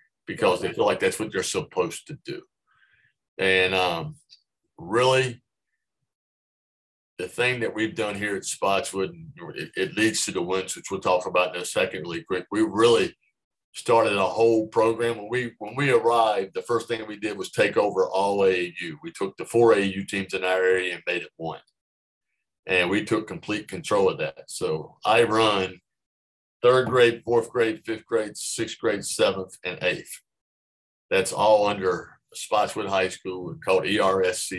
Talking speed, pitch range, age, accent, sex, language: 175 wpm, 95-130 Hz, 50-69, American, male, English